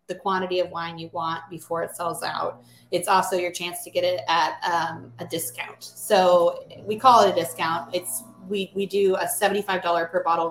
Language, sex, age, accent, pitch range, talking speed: English, female, 20-39, American, 170-205 Hz, 200 wpm